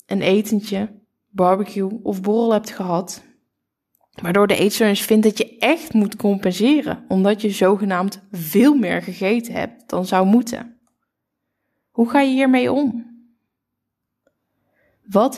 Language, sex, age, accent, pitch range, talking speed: Dutch, female, 20-39, Dutch, 200-235 Hz, 125 wpm